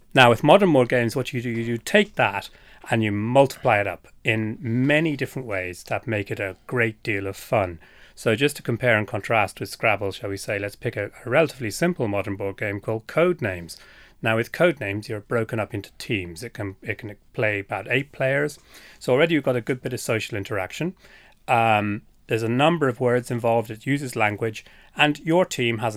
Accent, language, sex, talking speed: British, English, male, 205 wpm